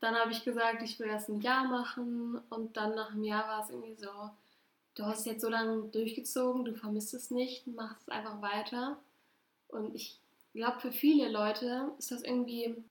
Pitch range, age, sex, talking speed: 210-240 Hz, 10-29, female, 195 wpm